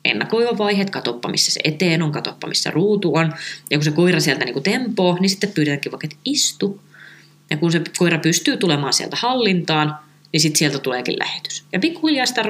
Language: Finnish